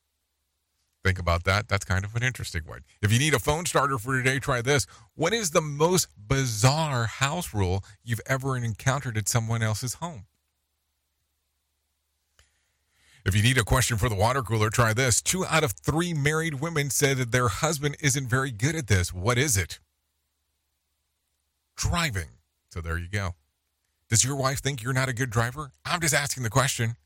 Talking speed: 180 wpm